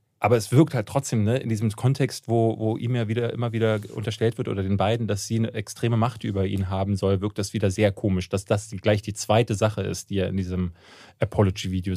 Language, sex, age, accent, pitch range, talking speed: German, male, 30-49, German, 105-125 Hz, 235 wpm